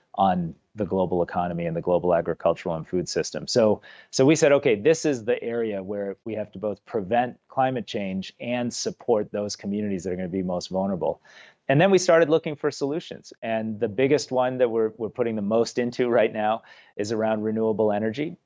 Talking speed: 205 wpm